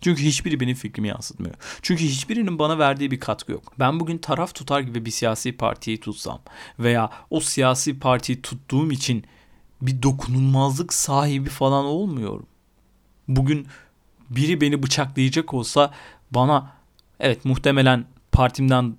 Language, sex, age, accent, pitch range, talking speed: Turkish, male, 40-59, native, 120-150 Hz, 130 wpm